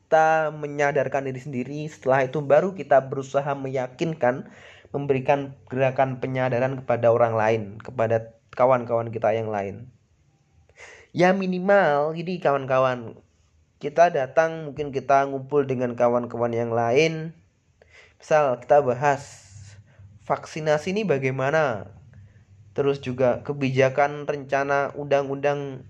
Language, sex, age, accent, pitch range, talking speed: Indonesian, male, 20-39, native, 120-145 Hz, 105 wpm